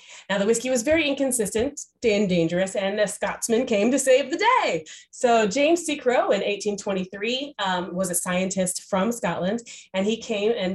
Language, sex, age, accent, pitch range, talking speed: English, female, 20-39, American, 170-230 Hz, 180 wpm